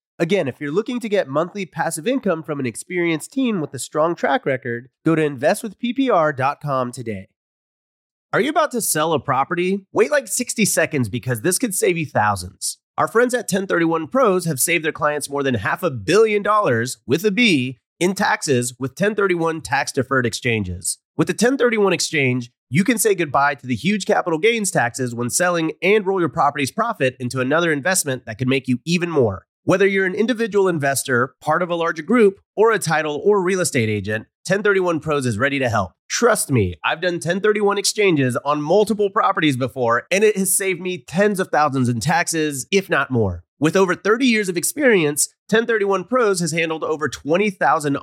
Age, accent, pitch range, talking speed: 30-49, American, 130-195 Hz, 190 wpm